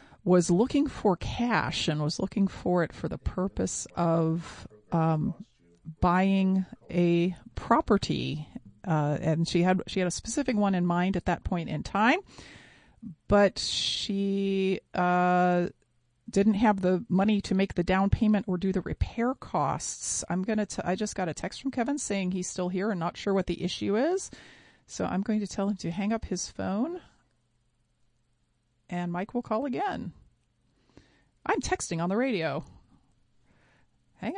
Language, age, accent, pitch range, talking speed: English, 40-59, American, 170-205 Hz, 160 wpm